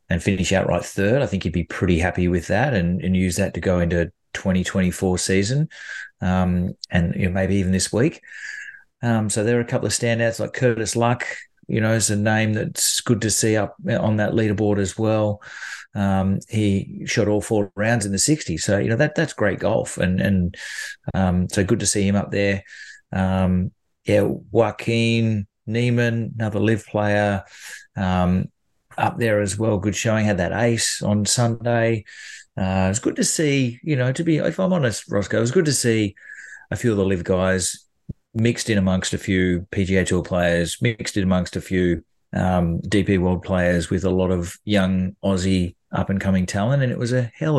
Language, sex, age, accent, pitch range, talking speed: English, male, 30-49, Australian, 95-115 Hz, 200 wpm